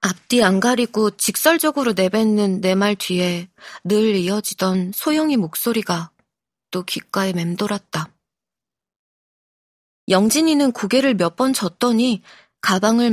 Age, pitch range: 20-39, 180-235 Hz